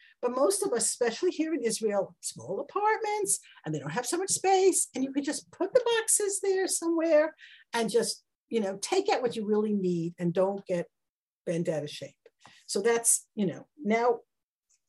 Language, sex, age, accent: English, female, 50-69, American